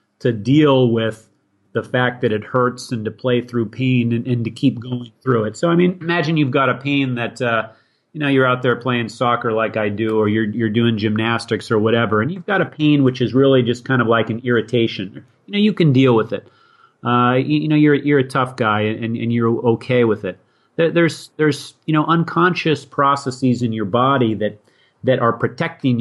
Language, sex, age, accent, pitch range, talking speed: English, male, 30-49, American, 115-140 Hz, 220 wpm